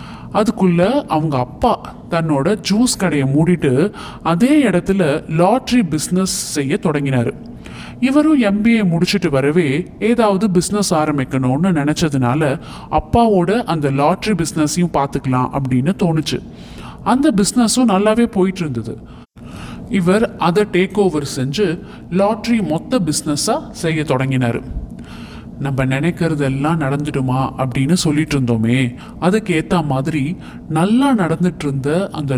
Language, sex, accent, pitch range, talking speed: Tamil, male, native, 135-195 Hz, 105 wpm